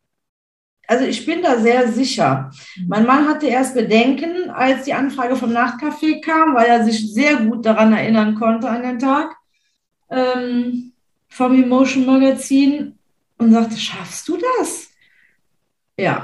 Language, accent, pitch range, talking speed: German, German, 210-260 Hz, 140 wpm